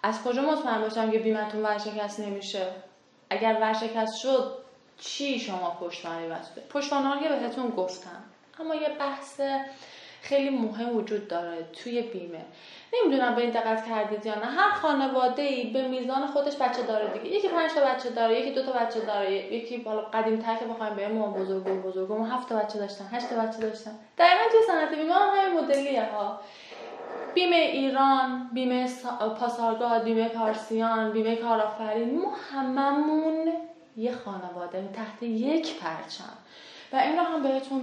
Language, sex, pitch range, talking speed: Persian, female, 215-280 Hz, 150 wpm